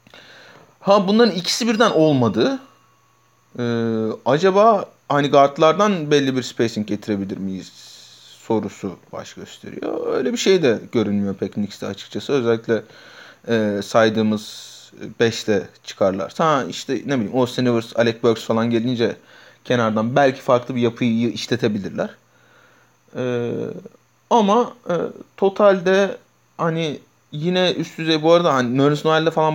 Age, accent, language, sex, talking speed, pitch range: 30-49, native, Turkish, male, 115 wpm, 115-150 Hz